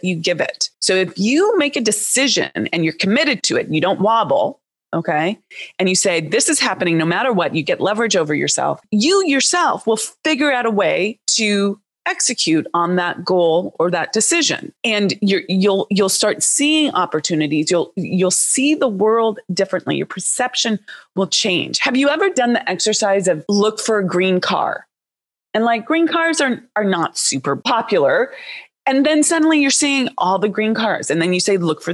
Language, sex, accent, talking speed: English, female, American, 190 wpm